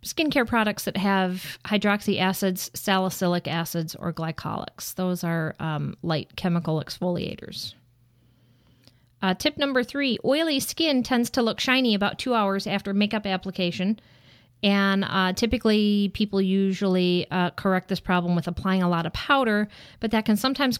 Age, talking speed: 40-59, 145 wpm